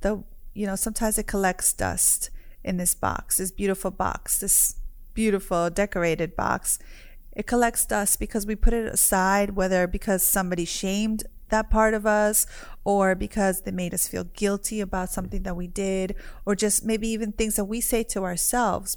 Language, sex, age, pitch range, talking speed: English, female, 30-49, 185-215 Hz, 175 wpm